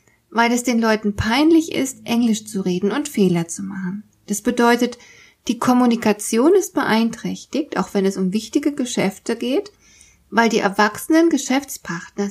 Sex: female